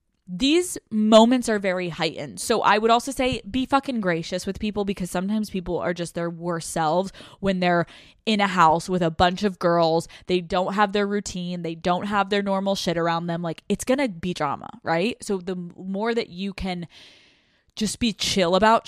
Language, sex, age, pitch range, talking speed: English, female, 20-39, 175-215 Hz, 200 wpm